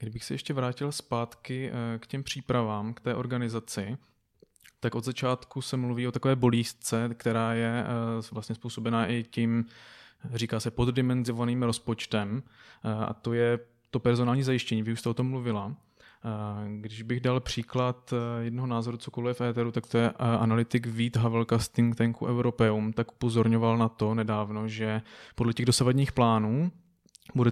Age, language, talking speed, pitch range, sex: 20-39, Czech, 155 wpm, 115-125 Hz, male